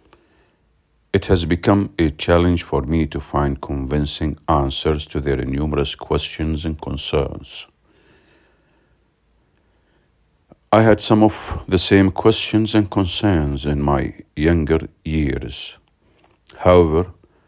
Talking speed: 105 wpm